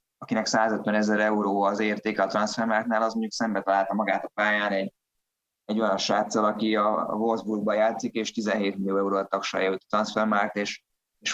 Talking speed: 180 wpm